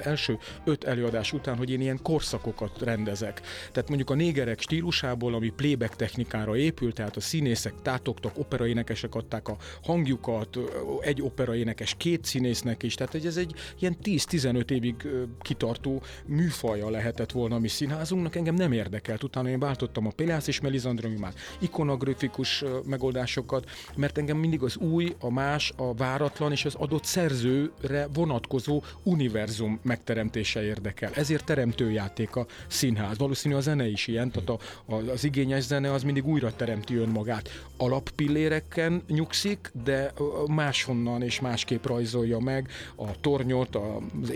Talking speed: 135 wpm